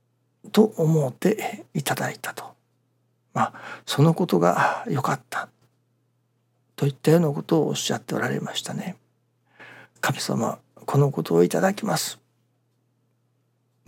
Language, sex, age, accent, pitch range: Japanese, male, 60-79, native, 120-155 Hz